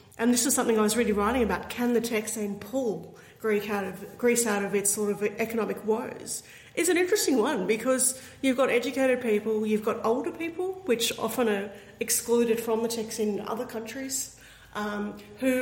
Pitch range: 210-240 Hz